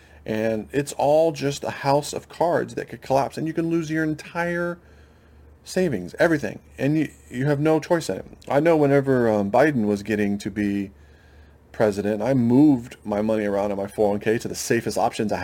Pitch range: 95-135 Hz